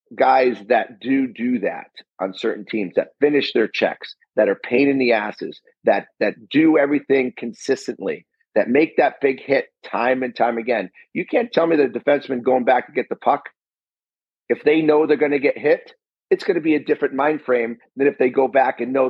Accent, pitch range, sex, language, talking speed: American, 125-160 Hz, male, English, 210 wpm